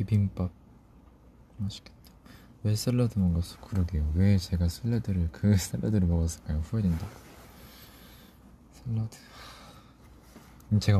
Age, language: 20-39, Korean